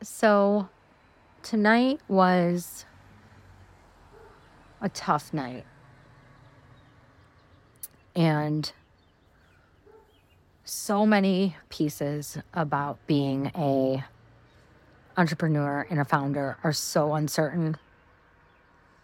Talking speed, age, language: 65 wpm, 30-49, English